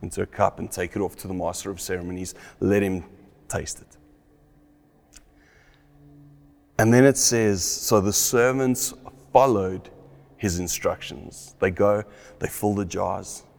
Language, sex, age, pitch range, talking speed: English, male, 30-49, 95-120 Hz, 140 wpm